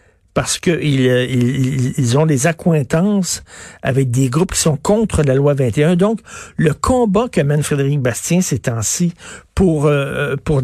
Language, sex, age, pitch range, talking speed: French, male, 60-79, 120-155 Hz, 160 wpm